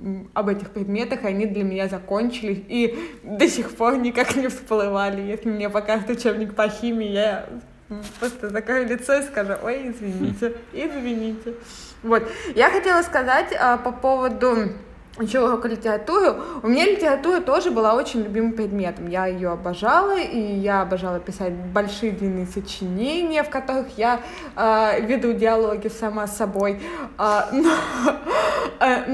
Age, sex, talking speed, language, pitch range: 20-39, female, 140 wpm, Russian, 215-275 Hz